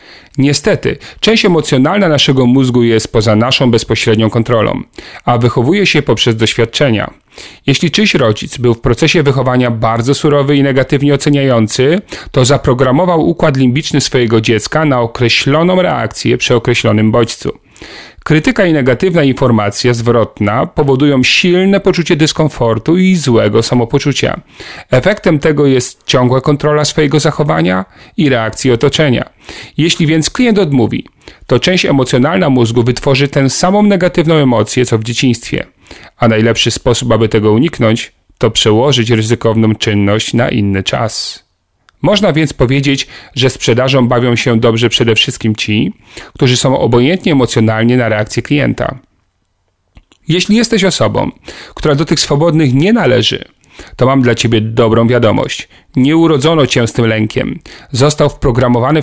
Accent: native